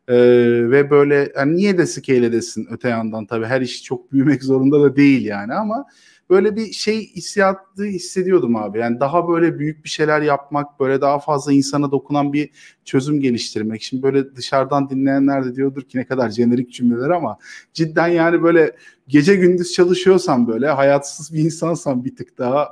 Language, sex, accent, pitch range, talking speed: Turkish, male, native, 135-180 Hz, 175 wpm